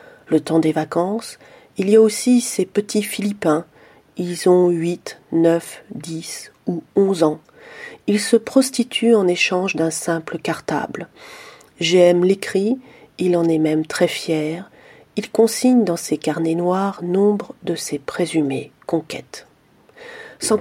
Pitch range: 165-220 Hz